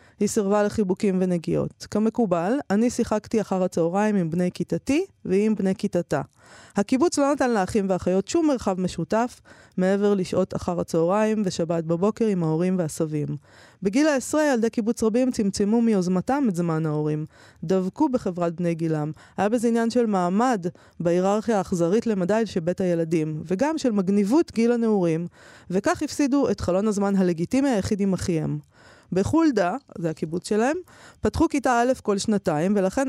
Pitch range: 175-225 Hz